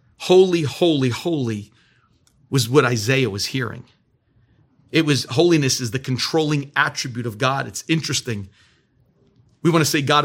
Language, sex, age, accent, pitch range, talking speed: English, male, 40-59, American, 120-150 Hz, 140 wpm